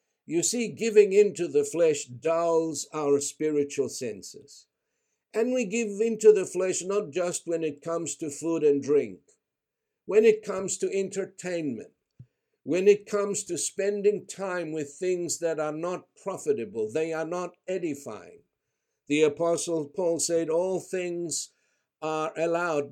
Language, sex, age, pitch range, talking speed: English, male, 60-79, 155-210 Hz, 140 wpm